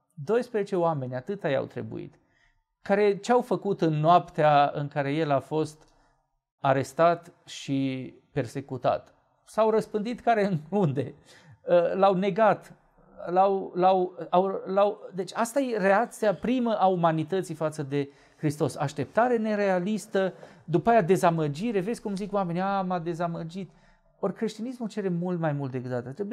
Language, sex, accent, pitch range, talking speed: Romanian, male, native, 150-205 Hz, 130 wpm